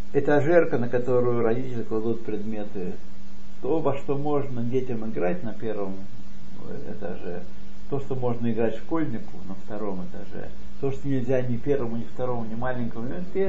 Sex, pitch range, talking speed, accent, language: male, 100-155 Hz, 145 wpm, native, Russian